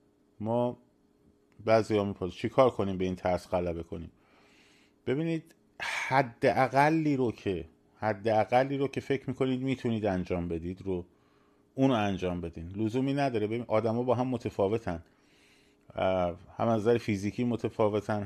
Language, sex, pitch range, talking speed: Persian, male, 100-125 Hz, 130 wpm